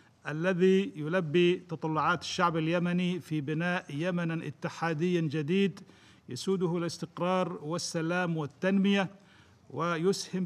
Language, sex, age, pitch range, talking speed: Arabic, male, 50-69, 160-185 Hz, 85 wpm